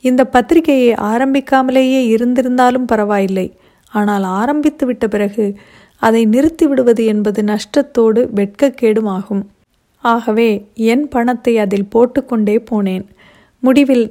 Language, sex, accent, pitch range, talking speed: Tamil, female, native, 210-255 Hz, 100 wpm